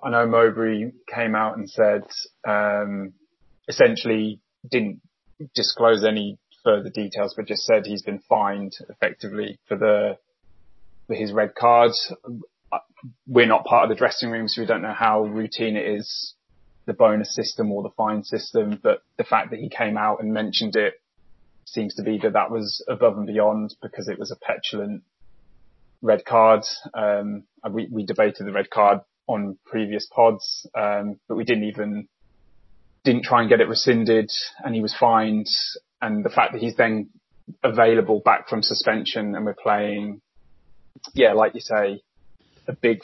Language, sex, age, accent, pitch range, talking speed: English, male, 20-39, British, 105-115 Hz, 165 wpm